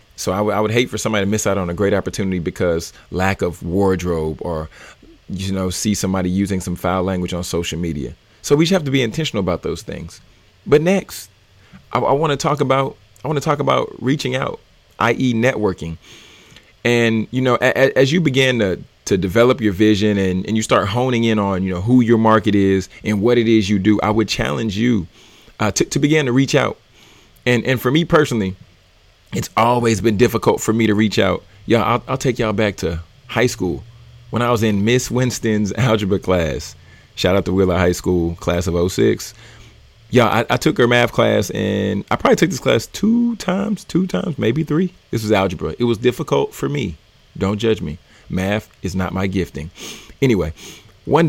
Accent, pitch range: American, 95-125 Hz